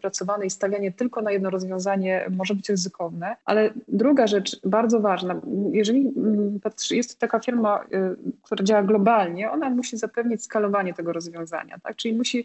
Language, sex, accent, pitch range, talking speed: Polish, female, native, 190-230 Hz, 150 wpm